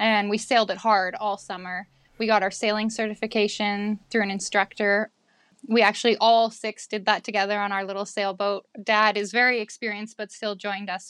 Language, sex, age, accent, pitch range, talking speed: English, female, 10-29, American, 195-225 Hz, 185 wpm